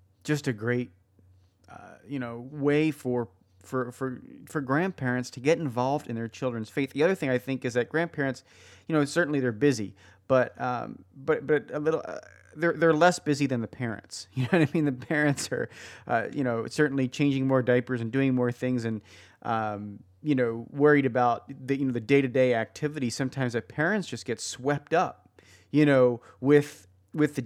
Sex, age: male, 30-49